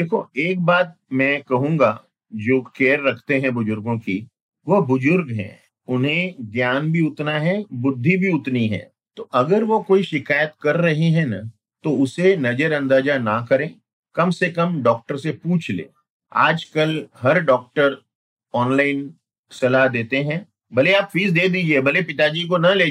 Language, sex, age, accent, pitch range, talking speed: Hindi, male, 50-69, native, 125-170 Hz, 155 wpm